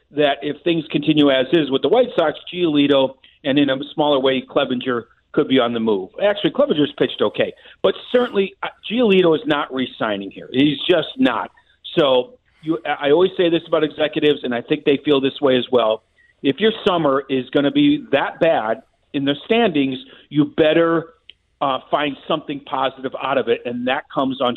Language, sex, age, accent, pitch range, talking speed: English, male, 50-69, American, 130-175 Hz, 190 wpm